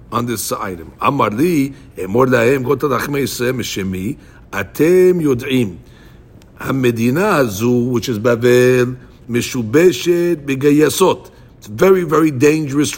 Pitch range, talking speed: 120-155 Hz, 105 wpm